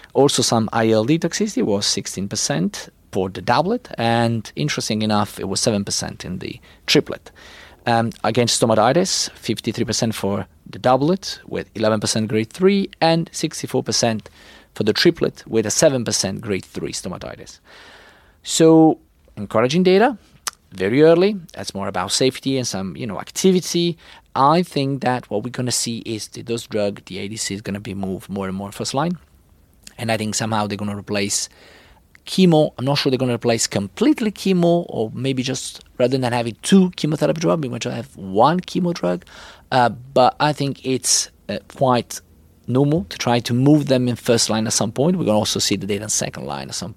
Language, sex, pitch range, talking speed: English, male, 100-135 Hz, 185 wpm